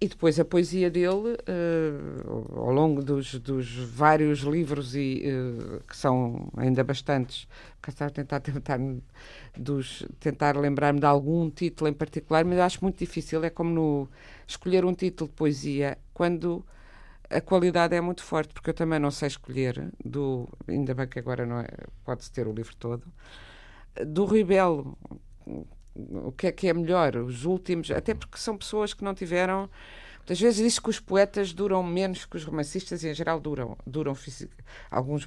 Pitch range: 135-180 Hz